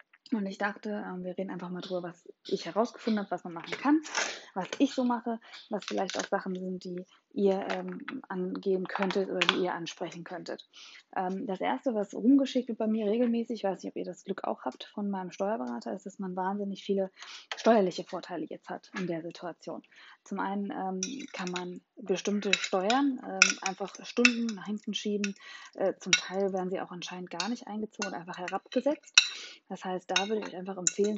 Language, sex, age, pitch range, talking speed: German, female, 20-39, 180-210 Hz, 190 wpm